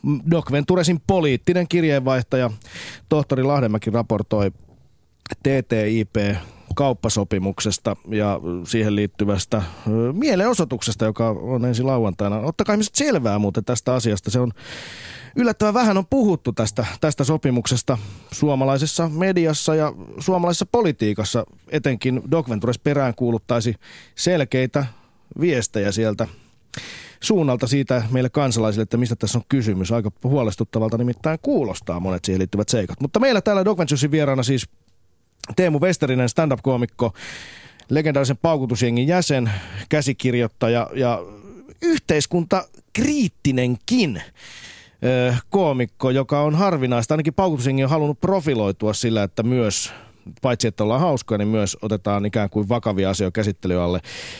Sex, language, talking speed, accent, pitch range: male, Finnish, 110 wpm, native, 110-150 Hz